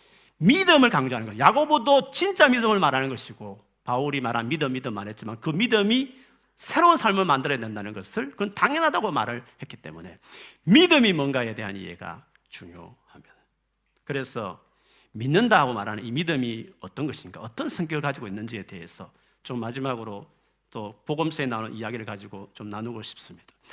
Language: Korean